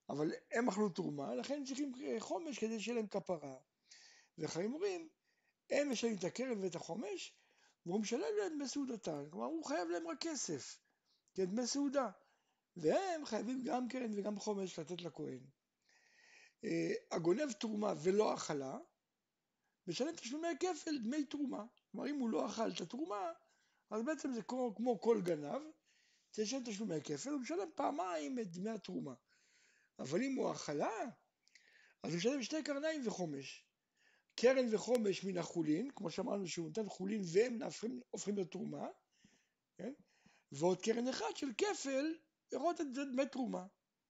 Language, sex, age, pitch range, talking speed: Hebrew, male, 60-79, 185-290 Hz, 145 wpm